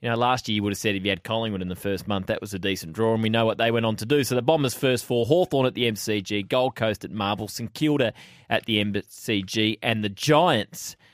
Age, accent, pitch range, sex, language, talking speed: 20-39, Australian, 105-135 Hz, male, English, 275 wpm